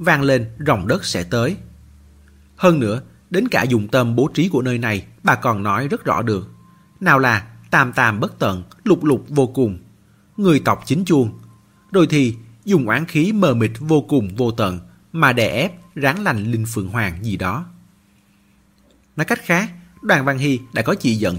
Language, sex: Vietnamese, male